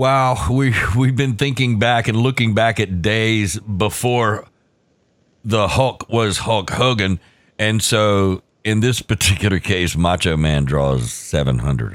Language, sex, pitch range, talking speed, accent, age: English, male, 110-150 Hz, 135 wpm, American, 60-79